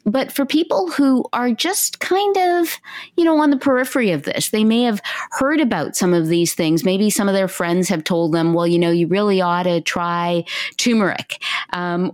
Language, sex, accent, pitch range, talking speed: English, female, American, 180-240 Hz, 210 wpm